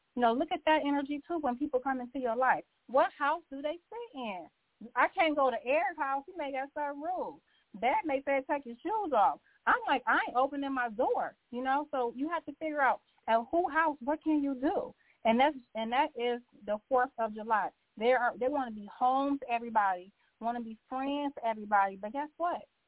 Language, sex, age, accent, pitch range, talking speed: English, female, 30-49, American, 230-290 Hz, 225 wpm